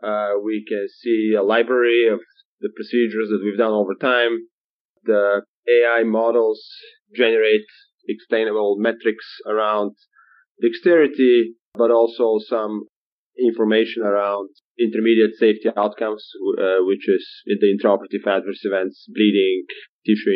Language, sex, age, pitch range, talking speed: English, male, 30-49, 105-130 Hz, 115 wpm